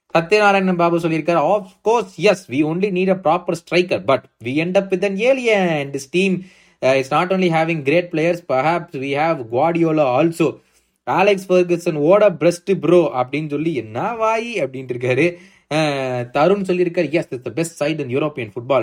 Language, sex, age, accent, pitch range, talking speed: Tamil, male, 20-39, native, 140-185 Hz, 180 wpm